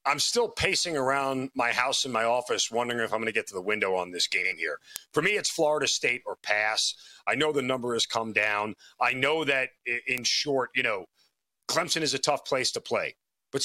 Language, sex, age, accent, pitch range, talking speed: English, male, 40-59, American, 140-210 Hz, 225 wpm